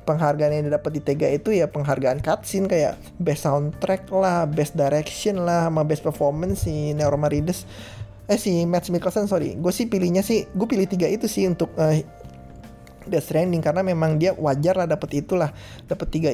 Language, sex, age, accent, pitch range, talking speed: Indonesian, male, 20-39, native, 150-190 Hz, 175 wpm